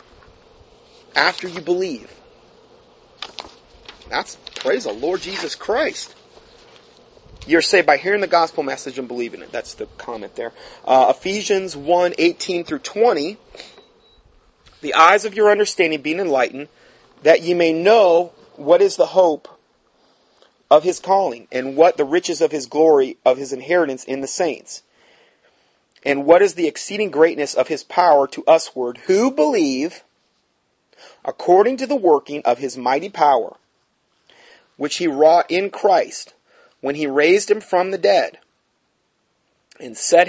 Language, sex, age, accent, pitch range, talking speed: English, male, 30-49, American, 140-230 Hz, 140 wpm